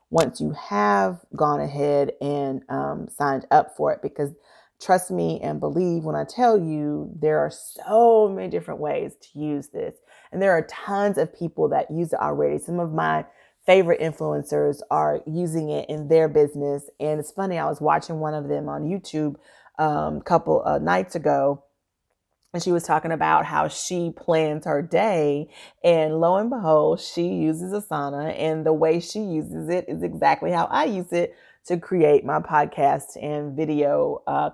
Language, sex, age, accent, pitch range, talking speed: English, female, 30-49, American, 145-180 Hz, 175 wpm